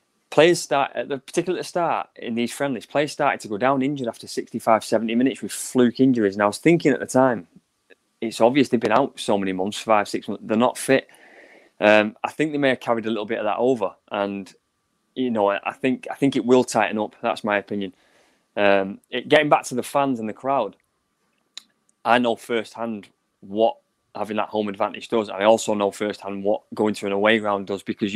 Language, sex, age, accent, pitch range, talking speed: English, male, 20-39, British, 100-120 Hz, 215 wpm